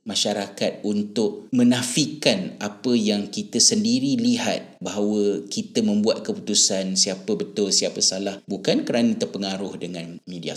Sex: male